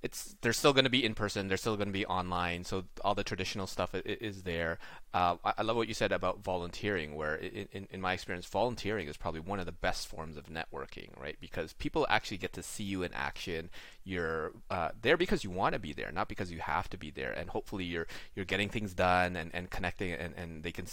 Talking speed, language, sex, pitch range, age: 230 wpm, English, male, 85-105 Hz, 30-49